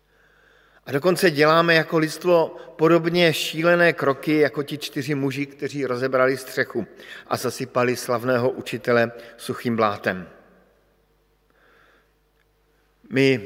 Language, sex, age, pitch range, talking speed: Slovak, male, 50-69, 125-155 Hz, 100 wpm